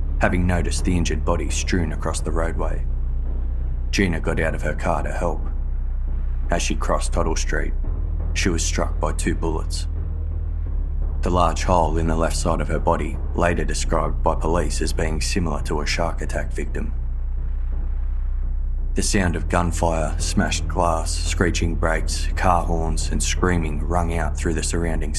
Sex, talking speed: male, 160 wpm